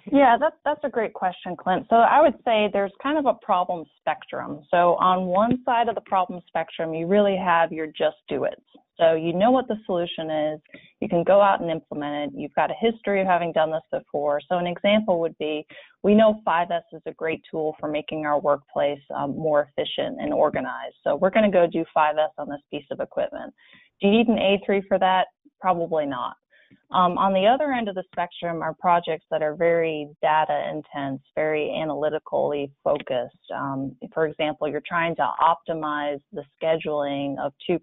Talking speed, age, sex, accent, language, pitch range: 190 wpm, 30-49, female, American, English, 150-195 Hz